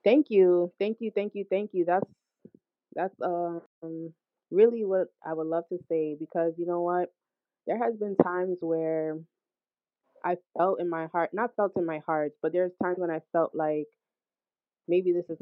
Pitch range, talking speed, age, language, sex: 155-175 Hz, 185 wpm, 20-39, English, female